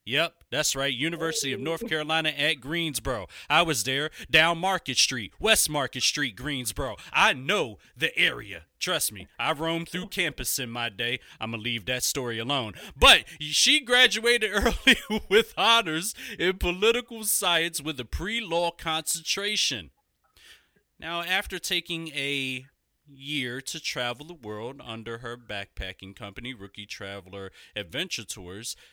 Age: 30-49